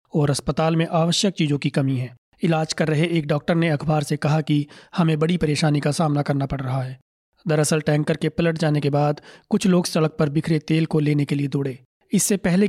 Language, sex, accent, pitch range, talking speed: Hindi, male, native, 145-170 Hz, 220 wpm